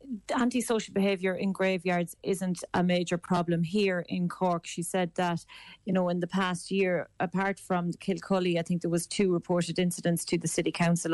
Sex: female